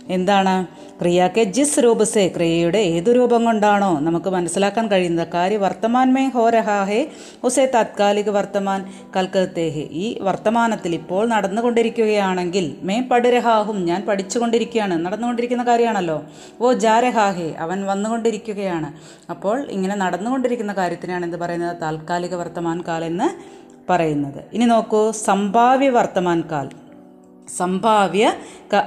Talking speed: 105 wpm